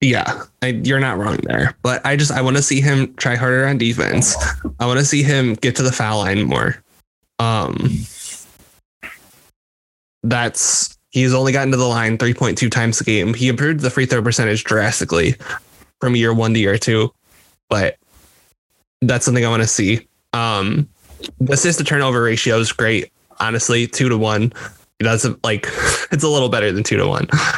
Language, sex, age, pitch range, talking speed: English, male, 10-29, 110-130 Hz, 180 wpm